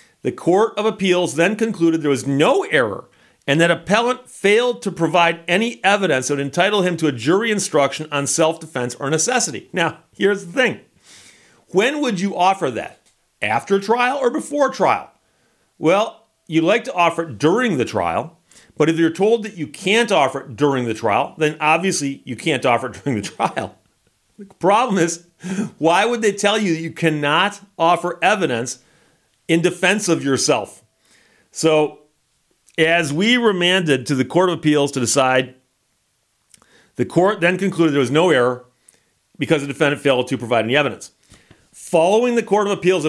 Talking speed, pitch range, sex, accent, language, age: 170 wpm, 145-190 Hz, male, American, English, 40-59